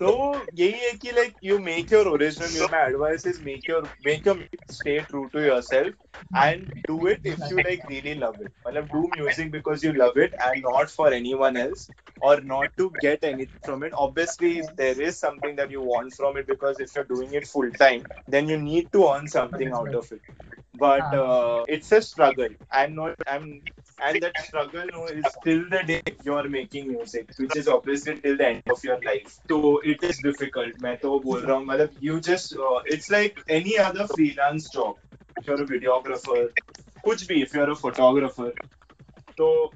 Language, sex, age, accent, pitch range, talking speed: Hindi, male, 20-39, native, 140-180 Hz, 200 wpm